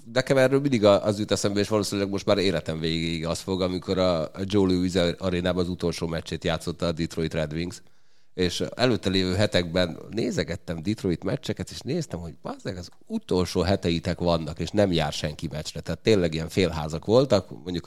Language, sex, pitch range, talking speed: Hungarian, male, 85-100 Hz, 180 wpm